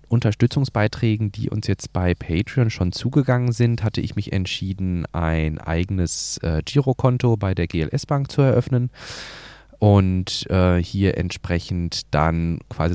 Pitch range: 85-115 Hz